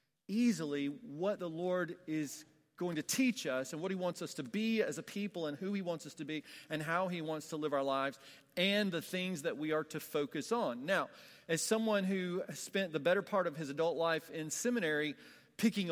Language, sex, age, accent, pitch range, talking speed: English, male, 40-59, American, 140-190 Hz, 220 wpm